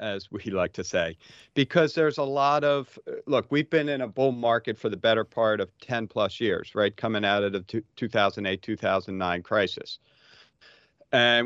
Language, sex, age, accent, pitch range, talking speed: English, male, 40-59, American, 105-135 Hz, 175 wpm